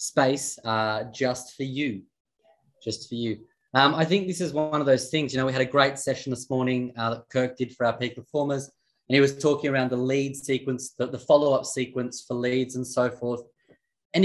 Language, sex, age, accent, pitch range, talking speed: English, male, 20-39, Australian, 130-160 Hz, 220 wpm